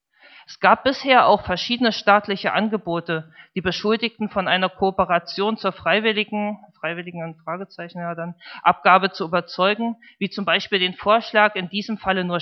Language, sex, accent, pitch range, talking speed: German, male, German, 175-210 Hz, 145 wpm